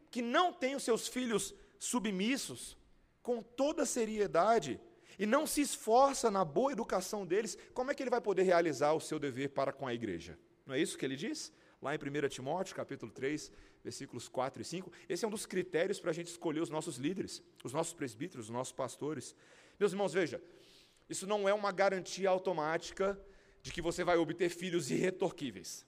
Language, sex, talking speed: Portuguese, male, 195 wpm